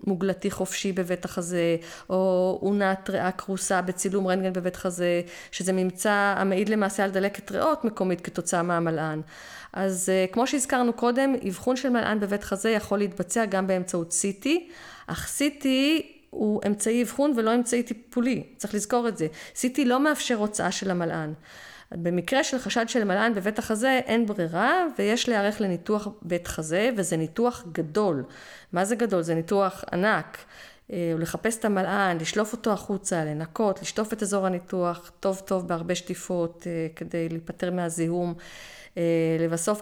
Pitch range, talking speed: 175-220 Hz, 145 wpm